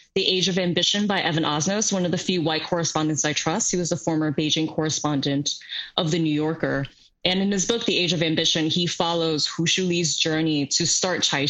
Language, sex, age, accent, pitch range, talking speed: English, female, 20-39, American, 155-210 Hz, 215 wpm